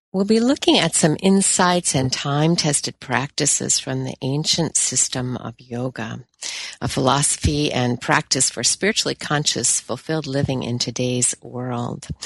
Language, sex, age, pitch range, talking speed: English, female, 50-69, 130-175 Hz, 130 wpm